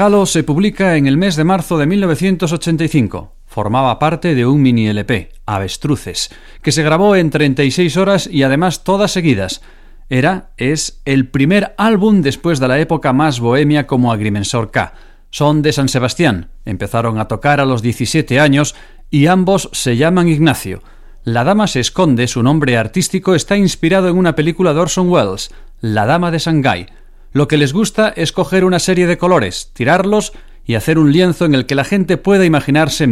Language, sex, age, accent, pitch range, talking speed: Spanish, male, 40-59, Spanish, 120-180 Hz, 175 wpm